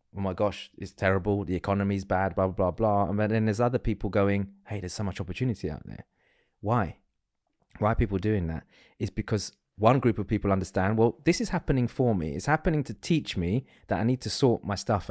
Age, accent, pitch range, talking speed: 20-39, British, 95-130 Hz, 220 wpm